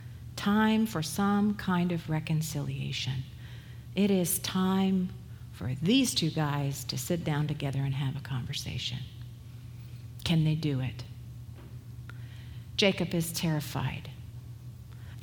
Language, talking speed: English, 115 wpm